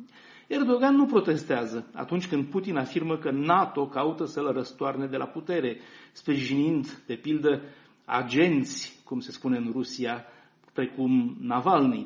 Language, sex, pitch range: Romanian, male, 140-205 Hz